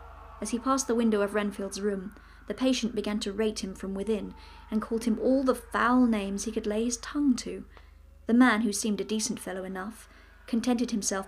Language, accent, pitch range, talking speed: English, British, 200-225 Hz, 205 wpm